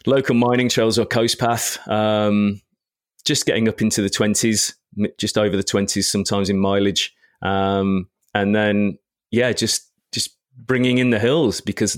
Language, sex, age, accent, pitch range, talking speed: English, male, 30-49, British, 100-115 Hz, 155 wpm